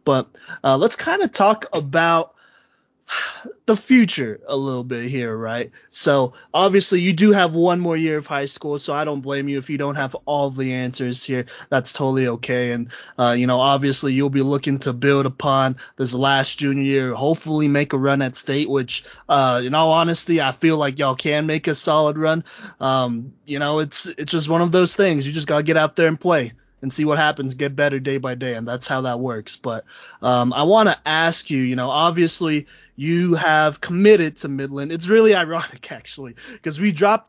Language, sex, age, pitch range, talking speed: English, male, 20-39, 135-165 Hz, 210 wpm